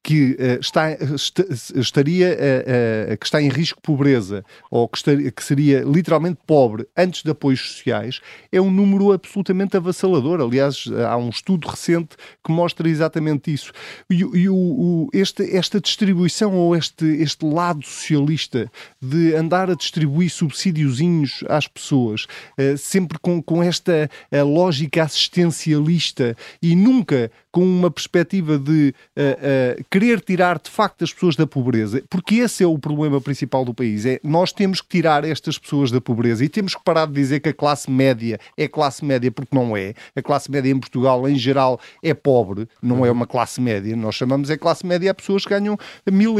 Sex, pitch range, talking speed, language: male, 135-180 Hz, 160 wpm, Portuguese